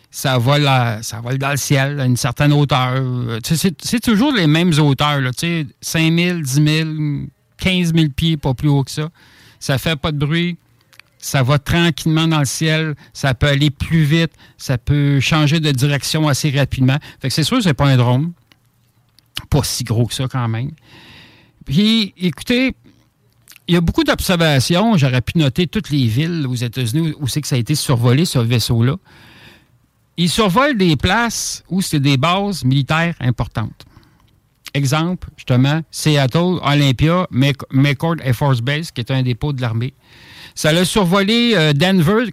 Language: French